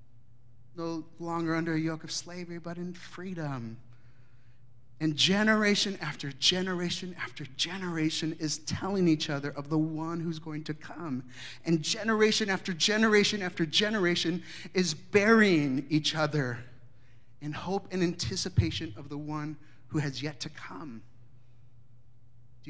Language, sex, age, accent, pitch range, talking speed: English, male, 30-49, American, 120-160 Hz, 130 wpm